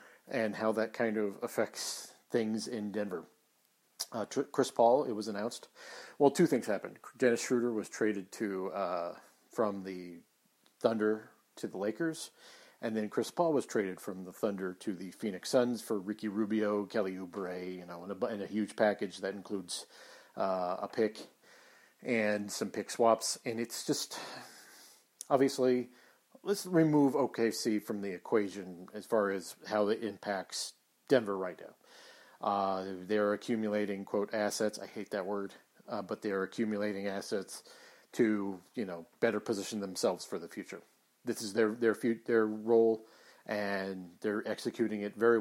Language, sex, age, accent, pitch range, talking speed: English, male, 40-59, American, 100-115 Hz, 155 wpm